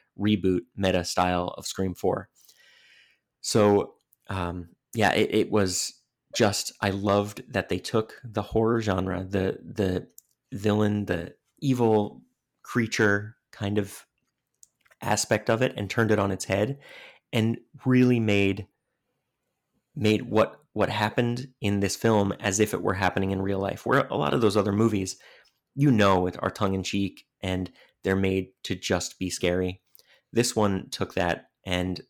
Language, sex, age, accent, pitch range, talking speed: English, male, 30-49, American, 95-110 Hz, 150 wpm